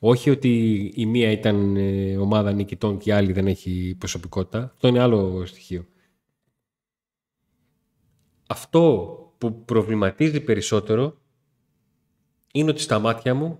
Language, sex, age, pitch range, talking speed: Greek, male, 30-49, 105-135 Hz, 115 wpm